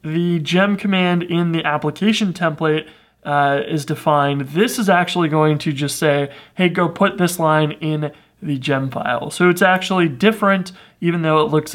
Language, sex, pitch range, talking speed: English, male, 150-180 Hz, 175 wpm